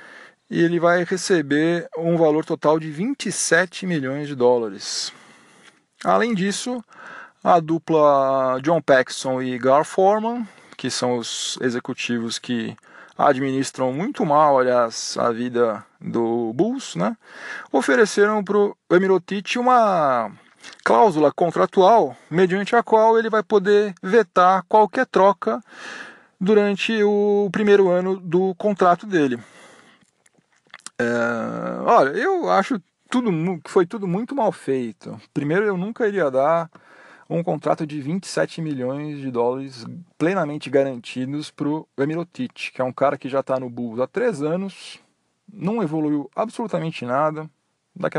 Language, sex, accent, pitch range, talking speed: Portuguese, male, Brazilian, 135-200 Hz, 130 wpm